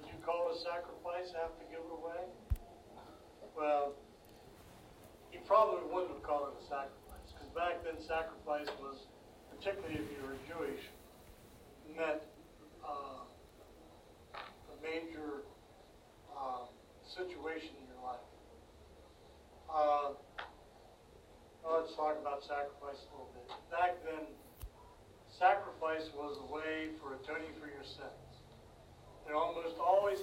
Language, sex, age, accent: English, male, 60-79, American